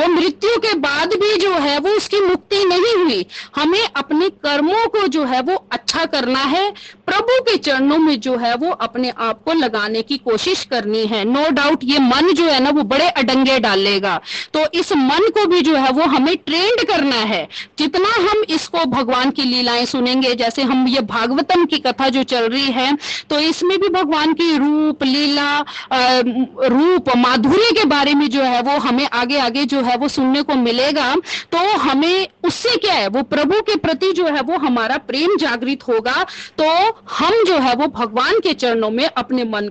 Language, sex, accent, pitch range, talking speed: Hindi, female, native, 265-365 Hz, 195 wpm